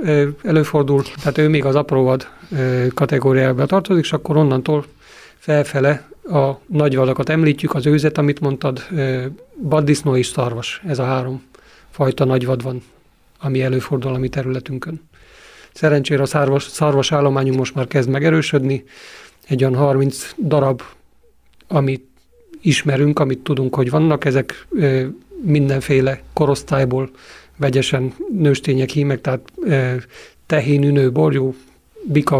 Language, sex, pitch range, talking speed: Hungarian, male, 130-150 Hz, 115 wpm